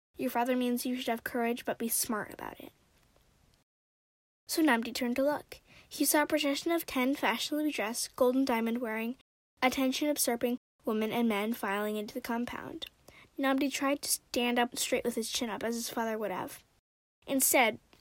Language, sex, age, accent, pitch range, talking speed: English, female, 10-29, American, 225-270 Hz, 170 wpm